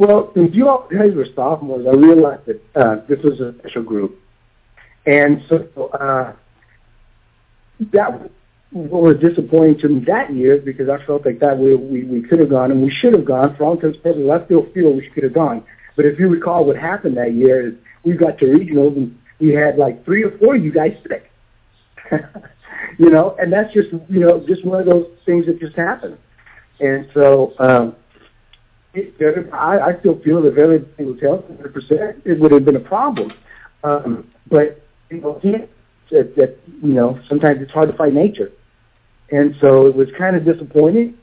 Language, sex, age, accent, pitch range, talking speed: English, male, 60-79, American, 125-165 Hz, 195 wpm